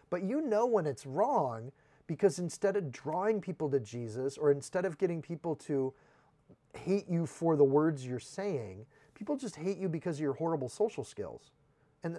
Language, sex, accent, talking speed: English, male, American, 180 wpm